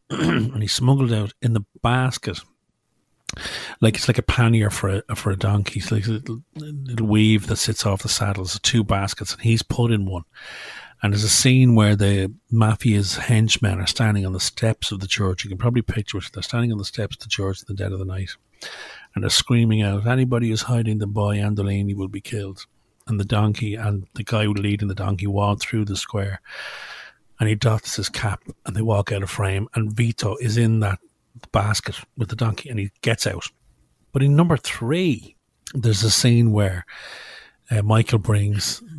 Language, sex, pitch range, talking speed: English, male, 100-120 Hz, 205 wpm